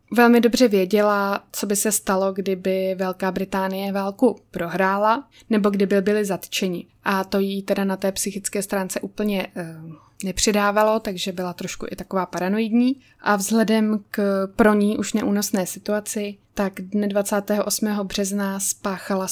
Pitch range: 190-220 Hz